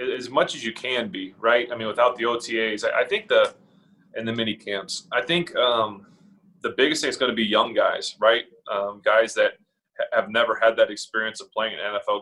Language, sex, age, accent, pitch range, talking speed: English, male, 20-39, American, 105-130 Hz, 215 wpm